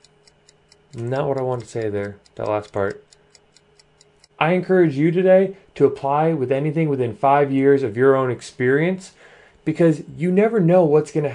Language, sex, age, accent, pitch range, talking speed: English, male, 30-49, American, 125-160 Hz, 165 wpm